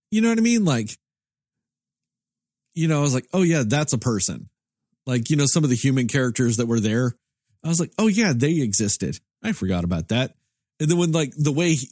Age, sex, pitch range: 40-59, male, 115-165 Hz